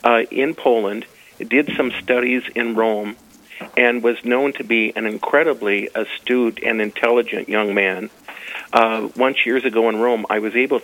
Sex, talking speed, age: male, 160 wpm, 50-69